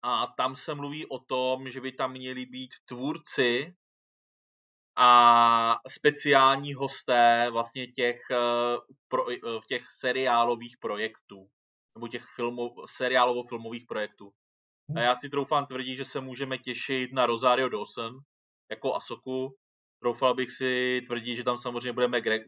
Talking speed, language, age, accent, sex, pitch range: 130 wpm, Czech, 20-39, native, male, 115-130 Hz